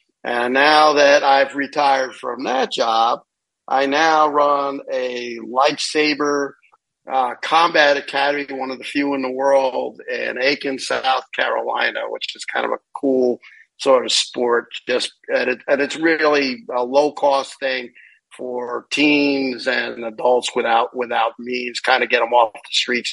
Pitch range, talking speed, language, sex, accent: 130-155 Hz, 155 wpm, English, male, American